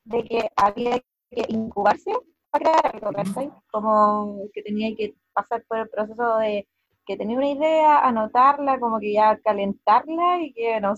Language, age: Spanish, 20-39